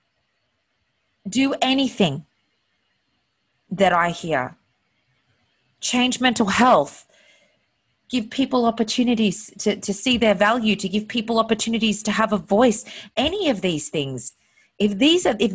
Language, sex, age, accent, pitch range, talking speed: English, female, 30-49, Australian, 165-245 Hz, 115 wpm